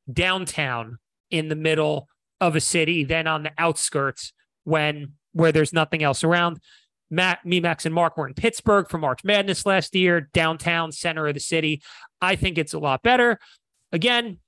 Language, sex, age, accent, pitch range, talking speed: English, male, 30-49, American, 140-175 Hz, 175 wpm